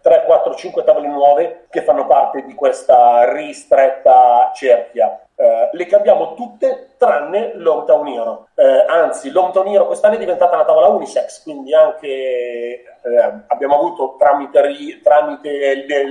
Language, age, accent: Italian, 40-59, native